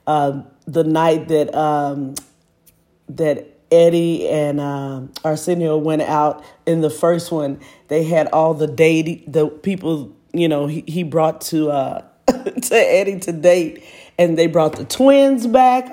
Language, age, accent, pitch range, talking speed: English, 40-59, American, 150-180 Hz, 155 wpm